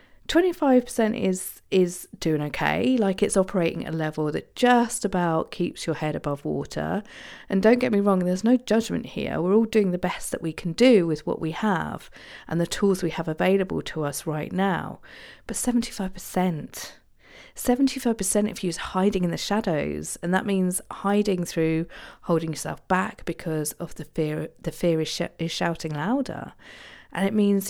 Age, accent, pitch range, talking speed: 40-59, British, 165-205 Hz, 180 wpm